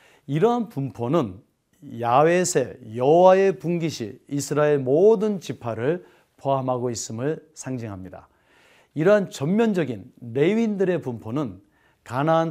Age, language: 40-59, Korean